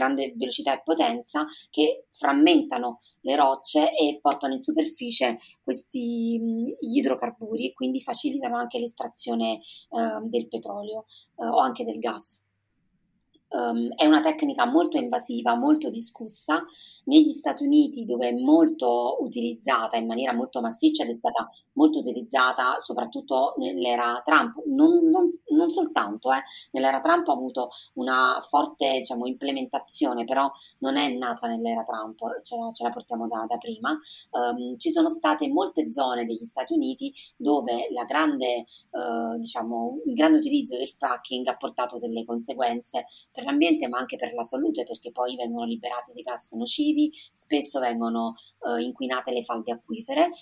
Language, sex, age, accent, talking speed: Italian, female, 30-49, native, 130 wpm